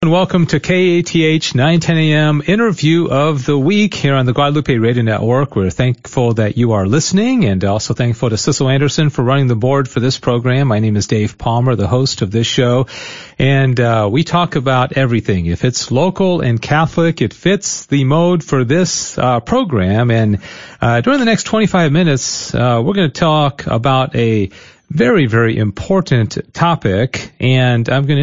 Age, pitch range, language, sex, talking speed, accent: 40-59, 115-150 Hz, English, male, 185 wpm, American